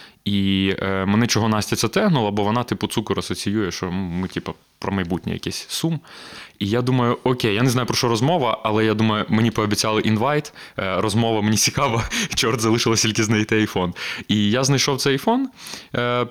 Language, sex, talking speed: Ukrainian, male, 190 wpm